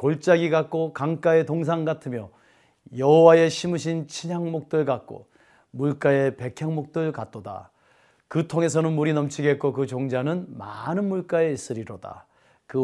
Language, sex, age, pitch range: Korean, male, 30-49, 125-165 Hz